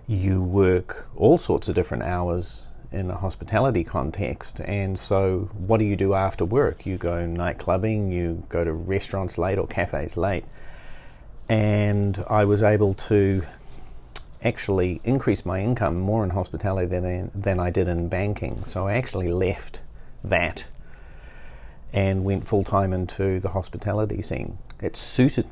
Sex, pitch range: male, 95-105 Hz